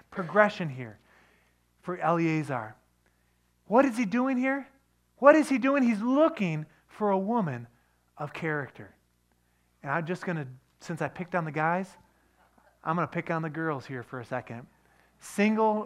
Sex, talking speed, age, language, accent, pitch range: male, 165 wpm, 30-49, English, American, 130-200 Hz